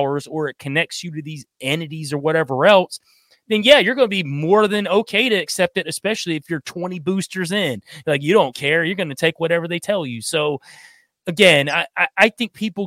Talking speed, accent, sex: 220 wpm, American, male